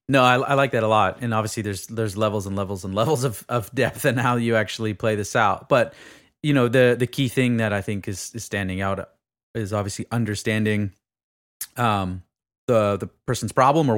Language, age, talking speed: English, 30-49, 210 wpm